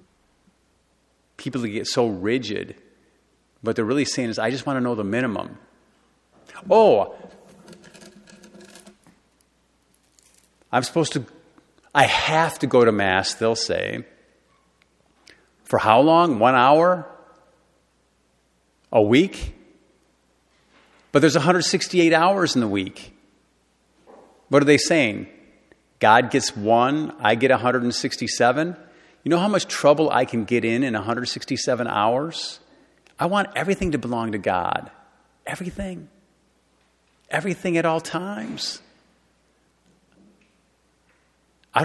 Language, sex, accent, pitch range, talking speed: English, male, American, 120-180 Hz, 110 wpm